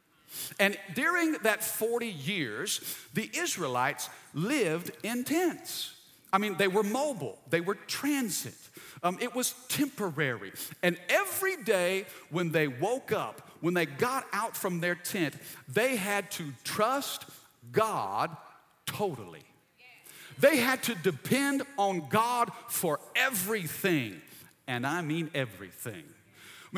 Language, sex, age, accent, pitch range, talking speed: English, male, 50-69, American, 155-220 Hz, 125 wpm